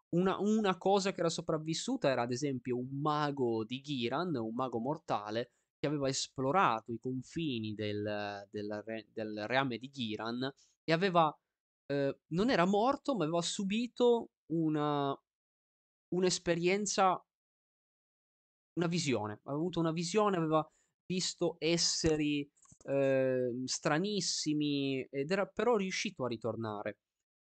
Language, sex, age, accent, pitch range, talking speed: Italian, male, 20-39, native, 115-170 Hz, 125 wpm